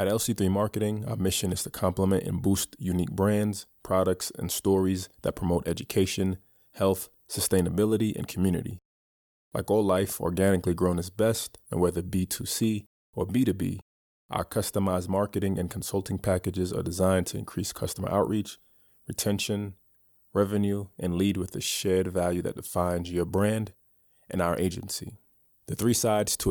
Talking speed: 145 wpm